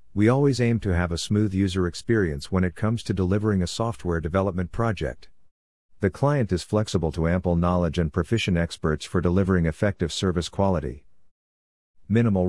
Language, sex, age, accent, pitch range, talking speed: English, male, 50-69, American, 85-100 Hz, 165 wpm